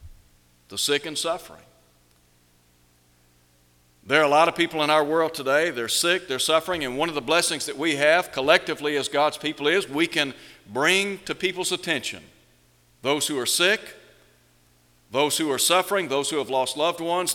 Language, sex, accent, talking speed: English, male, American, 175 wpm